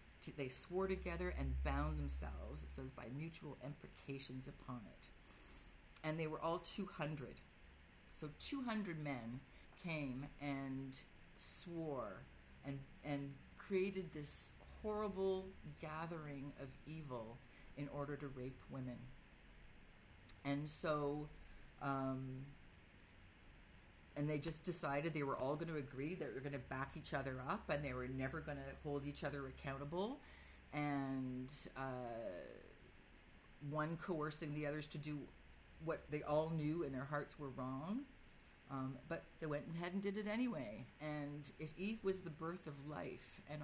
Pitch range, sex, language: 130-155 Hz, female, English